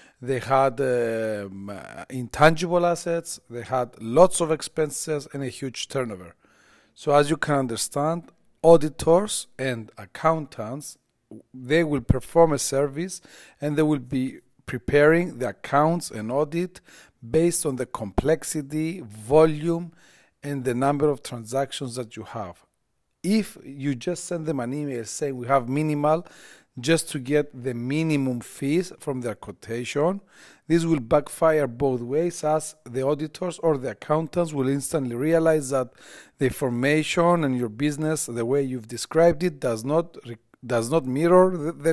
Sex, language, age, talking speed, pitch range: male, Greek, 40-59, 145 wpm, 130-165 Hz